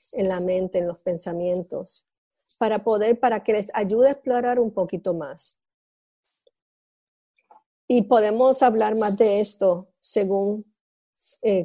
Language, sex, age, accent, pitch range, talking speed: English, female, 50-69, American, 195-260 Hz, 130 wpm